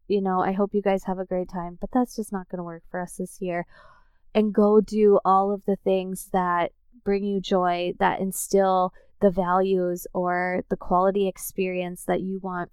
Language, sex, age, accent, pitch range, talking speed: English, female, 20-39, American, 180-210 Hz, 205 wpm